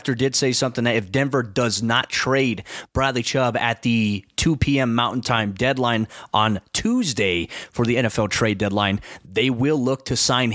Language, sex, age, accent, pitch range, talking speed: English, male, 30-49, American, 120-140 Hz, 170 wpm